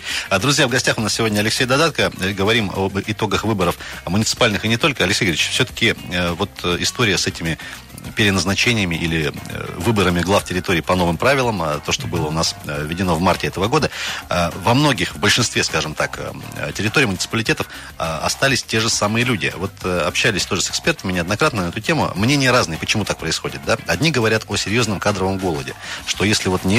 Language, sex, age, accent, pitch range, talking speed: Russian, male, 30-49, native, 90-115 Hz, 175 wpm